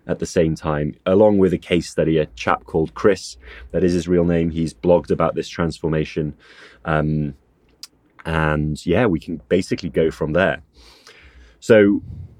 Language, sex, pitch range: English, male, 80-95 Hz